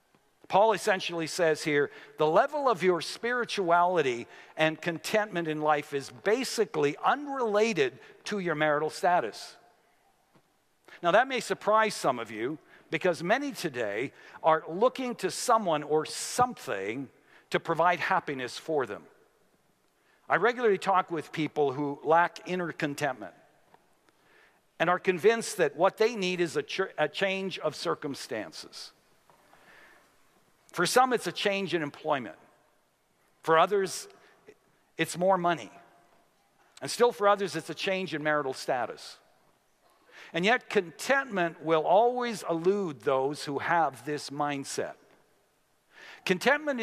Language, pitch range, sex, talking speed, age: English, 155-215 Hz, male, 125 wpm, 60-79